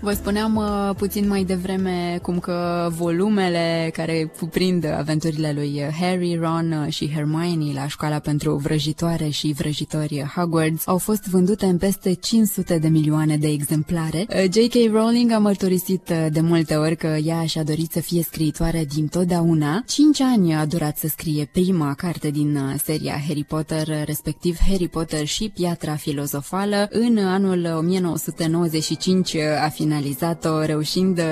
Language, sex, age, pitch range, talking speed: Romanian, female, 20-39, 155-190 Hz, 140 wpm